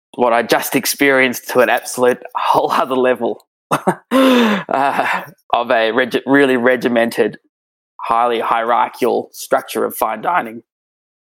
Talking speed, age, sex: 110 wpm, 20-39, male